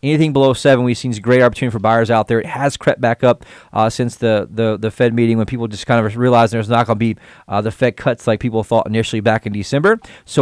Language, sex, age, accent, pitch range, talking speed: English, male, 30-49, American, 115-130 Hz, 265 wpm